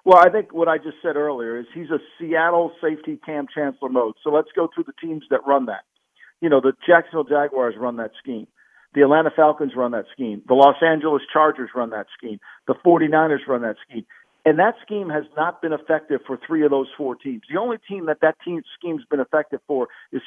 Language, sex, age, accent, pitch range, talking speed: English, male, 50-69, American, 140-180 Hz, 220 wpm